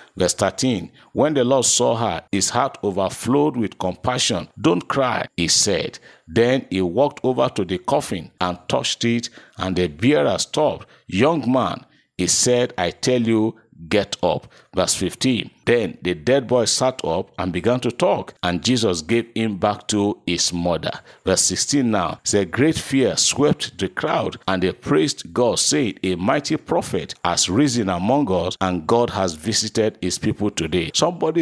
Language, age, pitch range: English, 50-69, 95-125 Hz